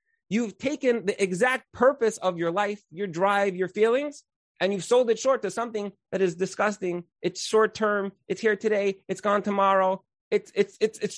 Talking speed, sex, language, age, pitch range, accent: 190 wpm, male, English, 30-49, 150-230 Hz, American